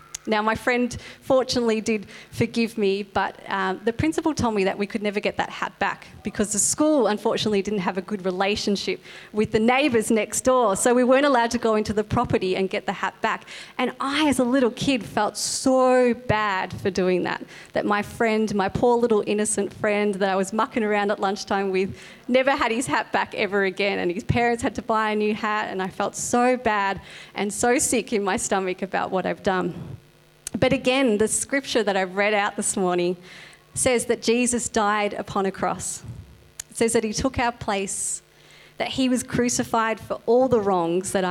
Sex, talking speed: female, 205 wpm